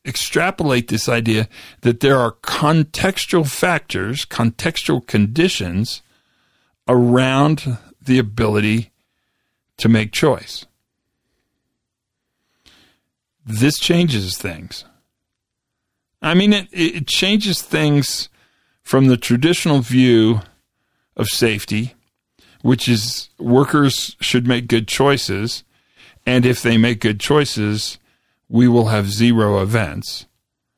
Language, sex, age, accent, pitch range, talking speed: English, male, 50-69, American, 115-150 Hz, 95 wpm